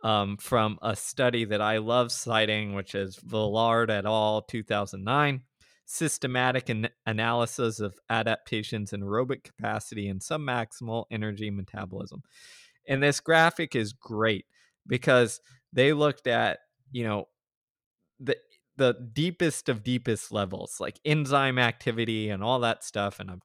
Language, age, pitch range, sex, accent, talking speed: English, 20-39, 110-145 Hz, male, American, 135 wpm